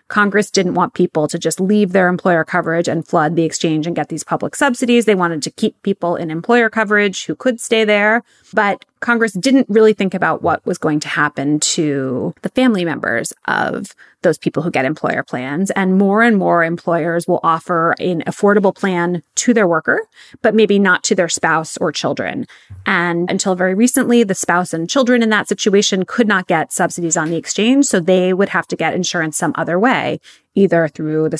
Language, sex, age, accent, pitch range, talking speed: English, female, 30-49, American, 170-225 Hz, 200 wpm